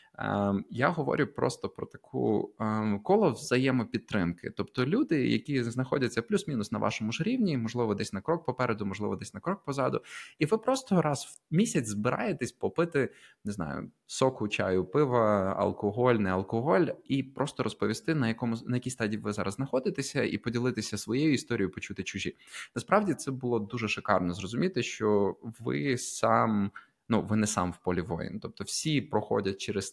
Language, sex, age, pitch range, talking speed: Ukrainian, male, 20-39, 105-125 Hz, 160 wpm